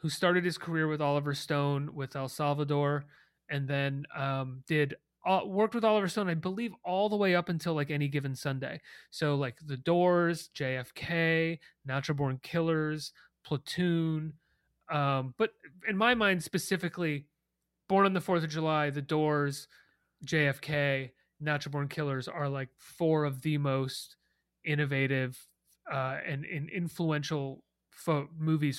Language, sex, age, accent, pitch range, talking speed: English, male, 30-49, American, 140-170 Hz, 145 wpm